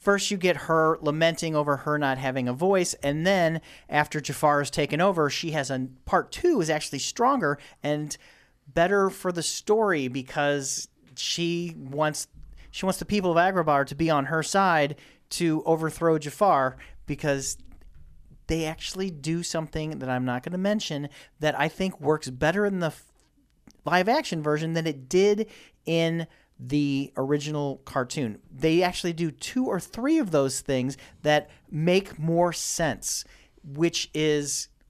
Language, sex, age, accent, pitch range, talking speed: English, male, 40-59, American, 140-170 Hz, 155 wpm